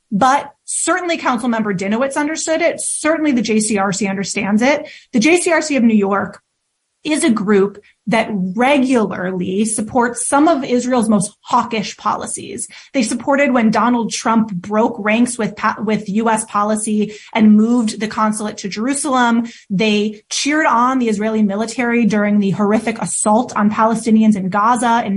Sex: female